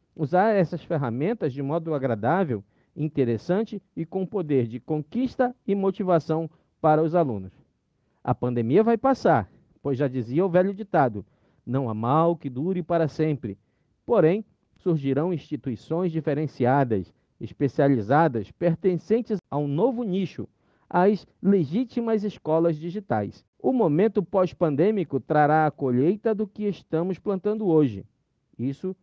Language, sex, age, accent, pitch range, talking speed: Portuguese, male, 50-69, Brazilian, 140-190 Hz, 125 wpm